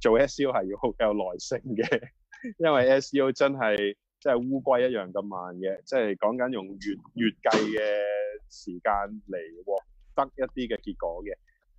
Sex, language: male, Chinese